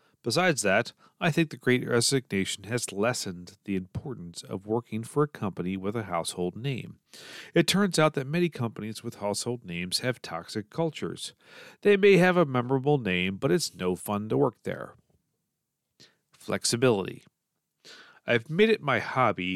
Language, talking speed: English, 155 wpm